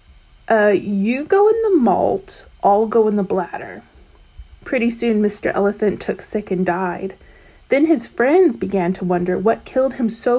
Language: English